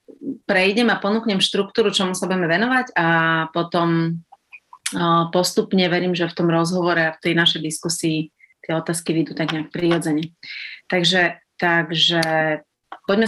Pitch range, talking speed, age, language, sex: 160-195 Hz, 135 wpm, 30-49, Slovak, female